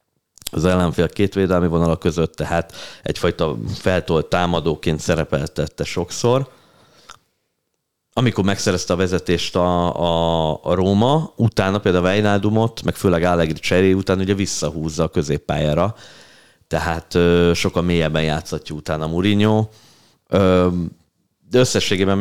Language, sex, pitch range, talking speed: Hungarian, male, 80-100 Hz, 105 wpm